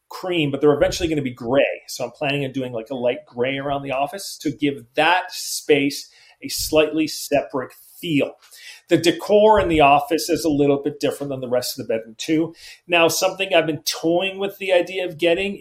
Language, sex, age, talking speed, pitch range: English, male, 40-59, 210 wpm, 135-175 Hz